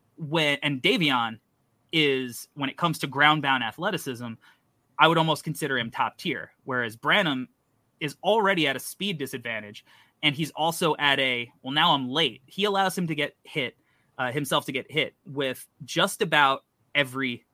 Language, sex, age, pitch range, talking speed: English, male, 20-39, 125-155 Hz, 170 wpm